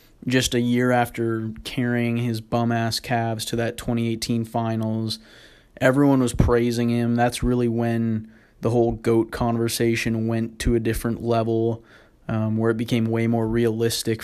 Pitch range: 115-120 Hz